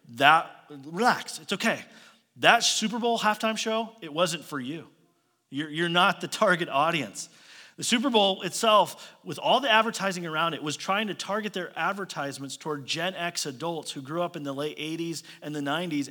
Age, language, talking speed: 30-49, English, 185 wpm